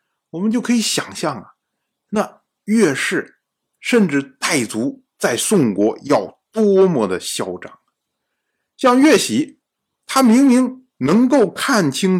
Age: 50-69